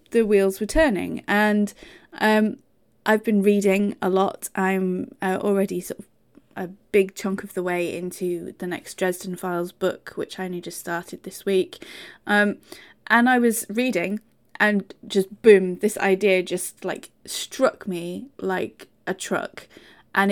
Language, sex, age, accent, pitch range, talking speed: English, female, 20-39, British, 185-230 Hz, 155 wpm